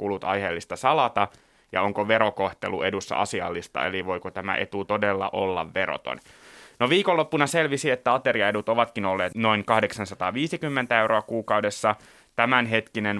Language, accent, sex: Finnish, native, male